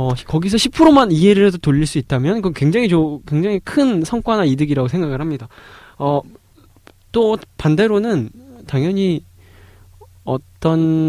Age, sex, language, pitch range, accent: 20-39, male, Korean, 110-175 Hz, native